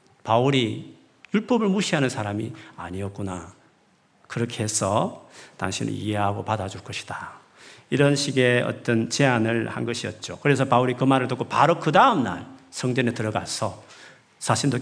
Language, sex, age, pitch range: Korean, male, 40-59, 110-145 Hz